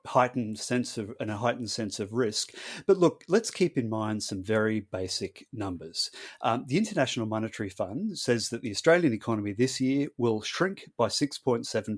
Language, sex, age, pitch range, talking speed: English, male, 30-49, 110-140 Hz, 190 wpm